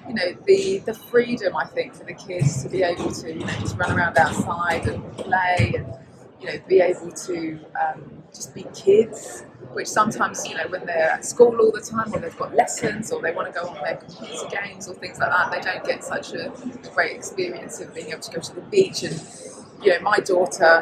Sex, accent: female, British